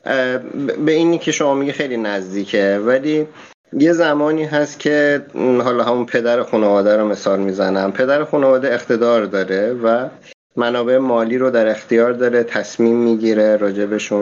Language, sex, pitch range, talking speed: Persian, male, 105-130 Hz, 140 wpm